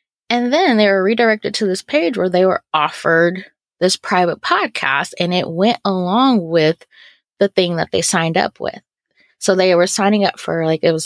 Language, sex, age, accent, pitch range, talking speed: English, female, 20-39, American, 165-215 Hz, 195 wpm